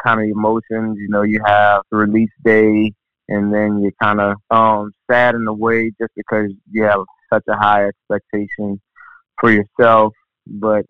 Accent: American